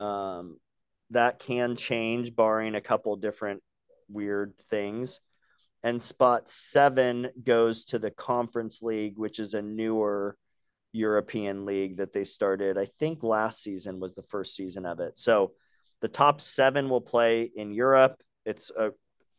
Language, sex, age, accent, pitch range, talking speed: English, male, 30-49, American, 100-125 Hz, 145 wpm